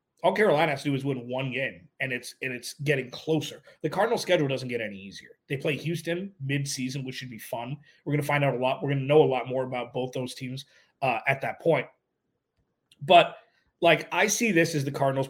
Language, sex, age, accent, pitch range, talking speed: English, male, 30-49, American, 130-155 Hz, 230 wpm